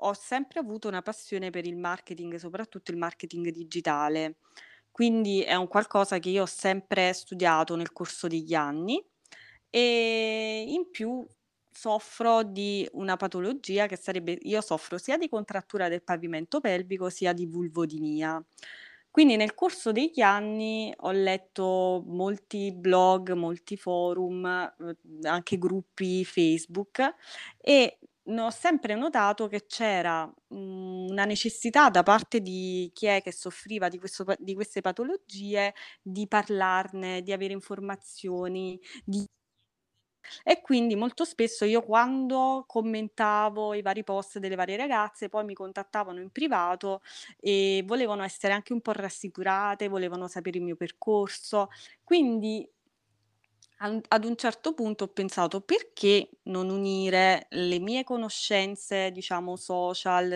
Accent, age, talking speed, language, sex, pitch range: native, 20-39, 130 wpm, Italian, female, 180-215 Hz